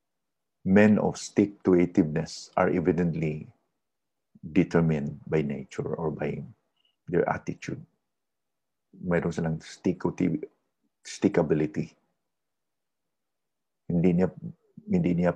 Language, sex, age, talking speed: English, male, 50-69, 85 wpm